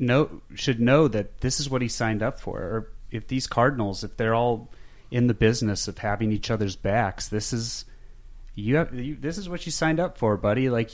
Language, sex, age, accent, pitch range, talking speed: English, male, 30-49, American, 95-120 Hz, 220 wpm